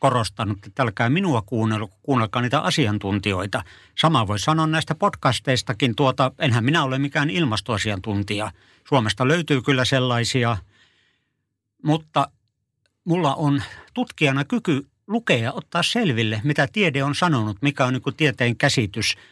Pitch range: 115-150 Hz